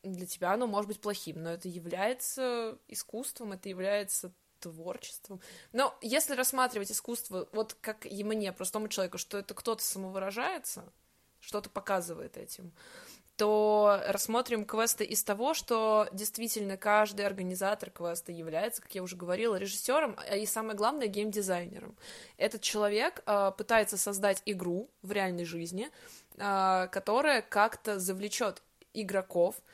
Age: 20-39